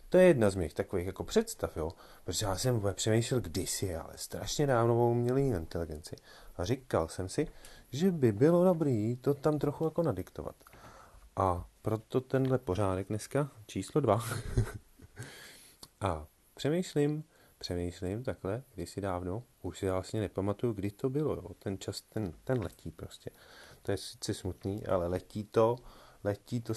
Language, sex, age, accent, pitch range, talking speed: Czech, male, 30-49, native, 95-130 Hz, 150 wpm